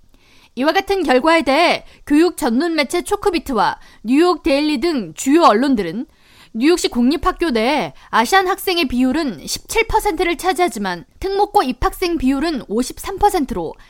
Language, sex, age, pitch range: Korean, female, 20-39, 255-360 Hz